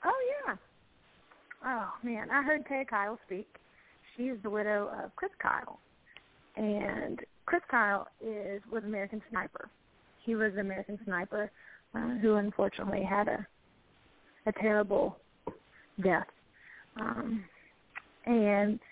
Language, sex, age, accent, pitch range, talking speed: English, female, 30-49, American, 200-230 Hz, 120 wpm